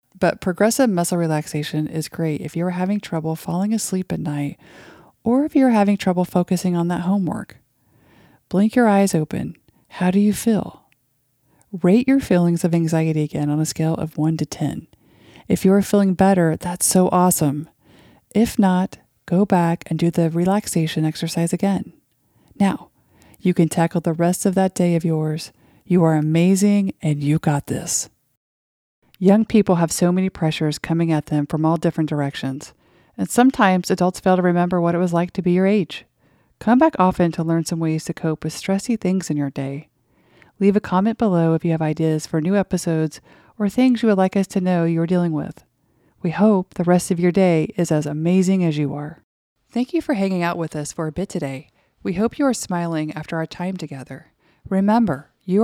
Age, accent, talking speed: 40-59, American, 195 wpm